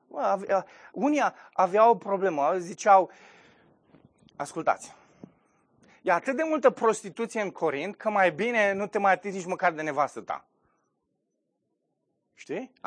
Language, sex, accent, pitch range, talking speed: Romanian, male, native, 190-250 Hz, 130 wpm